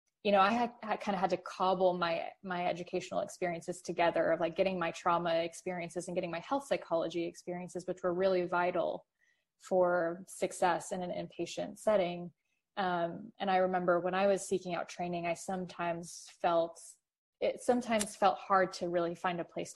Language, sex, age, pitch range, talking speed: English, female, 20-39, 175-200 Hz, 180 wpm